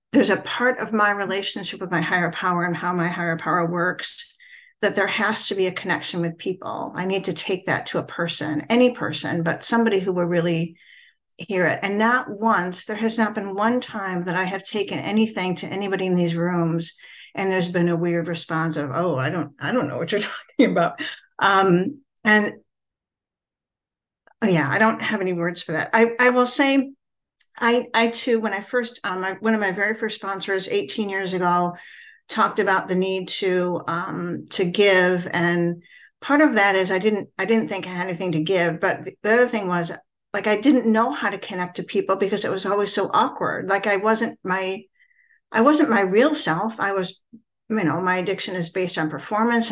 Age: 50-69